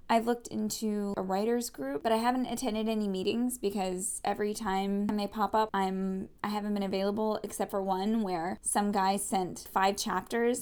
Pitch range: 190-225 Hz